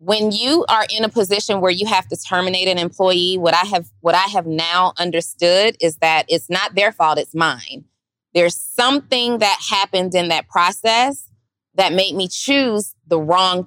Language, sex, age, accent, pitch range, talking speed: English, female, 20-39, American, 170-215 Hz, 185 wpm